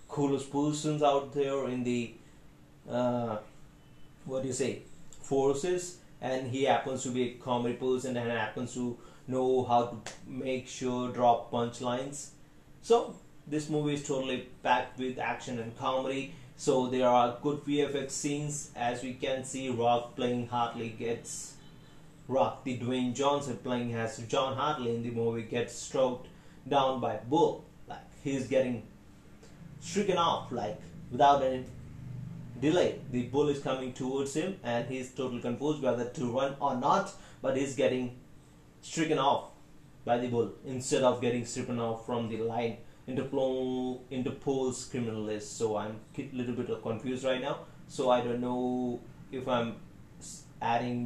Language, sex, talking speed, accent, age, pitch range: Hindi, male, 160 wpm, native, 30-49, 120-140 Hz